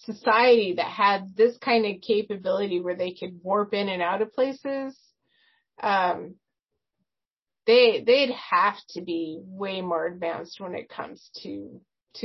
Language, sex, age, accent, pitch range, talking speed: English, female, 30-49, American, 190-255 Hz, 140 wpm